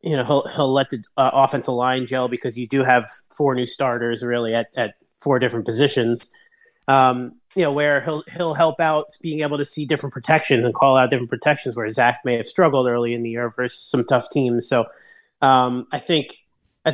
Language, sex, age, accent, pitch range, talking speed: English, male, 30-49, American, 125-150 Hz, 215 wpm